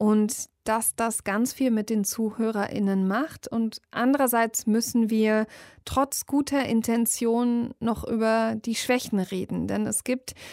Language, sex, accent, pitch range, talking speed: German, female, German, 215-245 Hz, 135 wpm